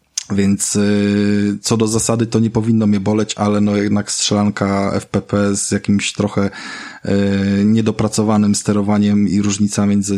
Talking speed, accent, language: 140 wpm, native, Polish